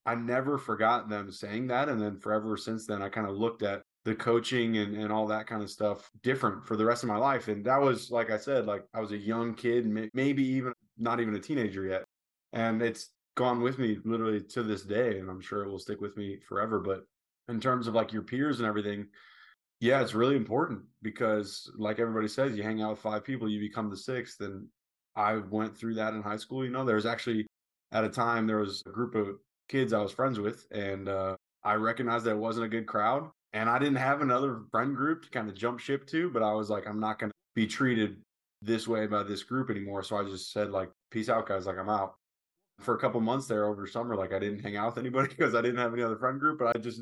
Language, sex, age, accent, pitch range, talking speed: English, male, 20-39, American, 105-120 Hz, 250 wpm